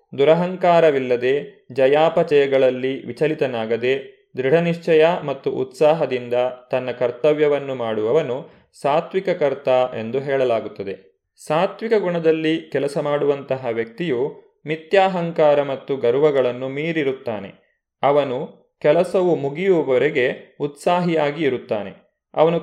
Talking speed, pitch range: 75 wpm, 130-165 Hz